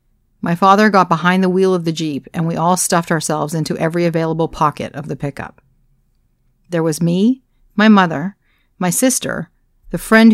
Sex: female